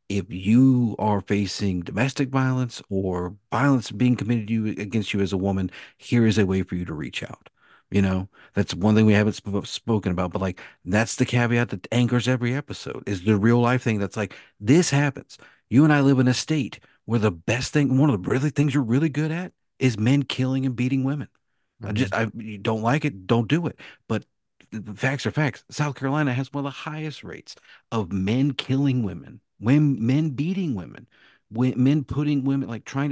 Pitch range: 105-135 Hz